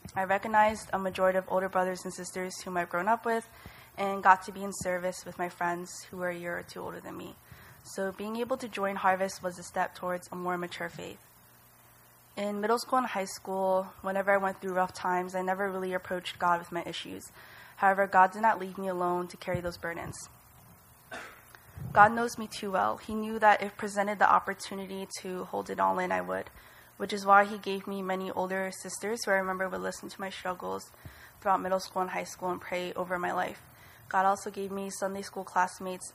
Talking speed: 215 wpm